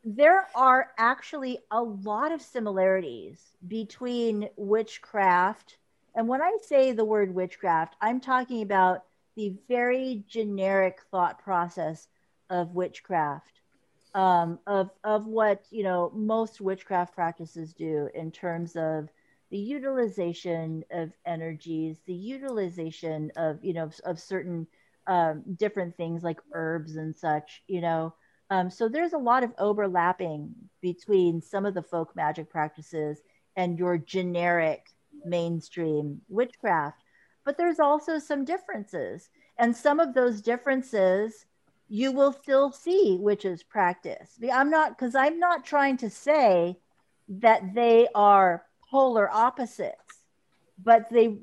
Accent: American